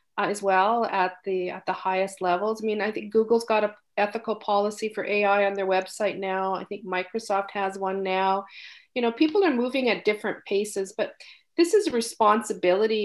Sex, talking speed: female, 195 wpm